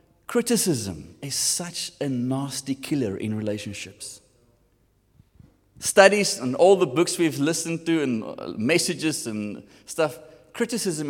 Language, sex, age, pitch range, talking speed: English, male, 30-49, 110-155 Hz, 115 wpm